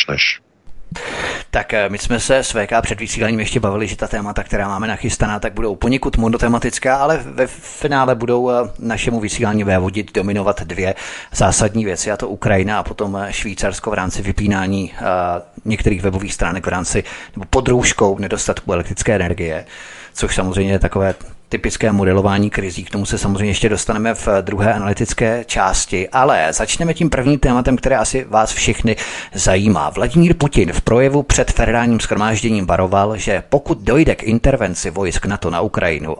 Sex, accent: male, native